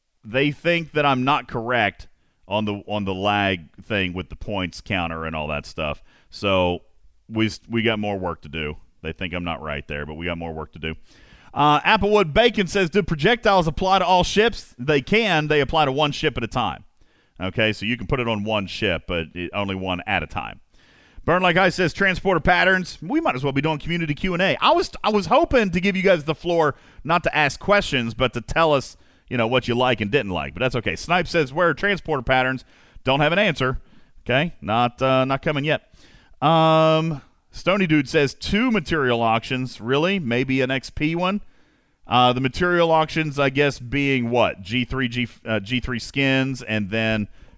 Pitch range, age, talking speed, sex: 100-165 Hz, 40-59, 205 wpm, male